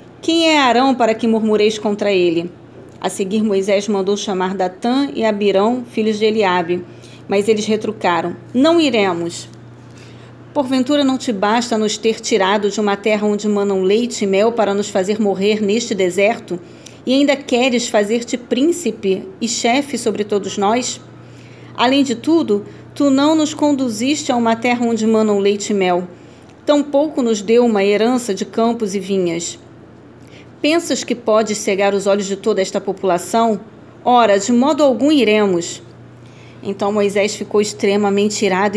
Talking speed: 155 wpm